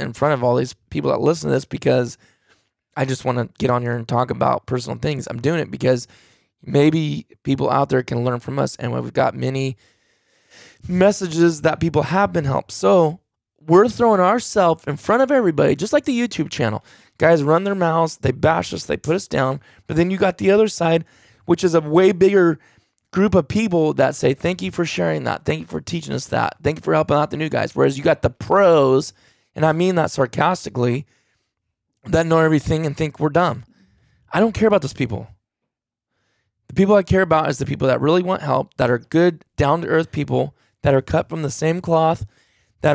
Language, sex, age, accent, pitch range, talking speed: English, male, 20-39, American, 125-175 Hz, 215 wpm